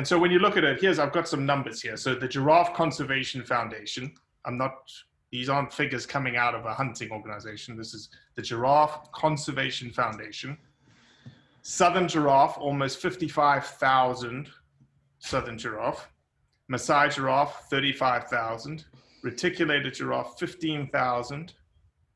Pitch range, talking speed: 125-150 Hz, 125 wpm